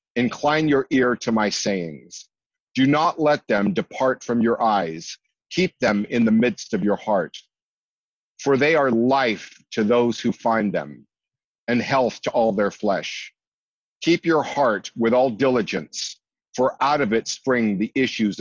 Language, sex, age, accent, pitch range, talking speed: English, male, 50-69, American, 110-140 Hz, 165 wpm